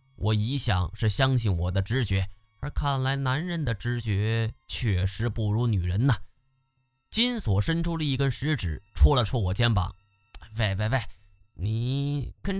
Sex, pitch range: male, 100-135 Hz